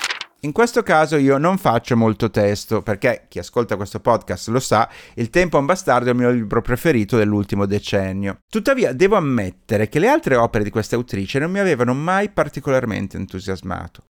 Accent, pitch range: native, 110-165 Hz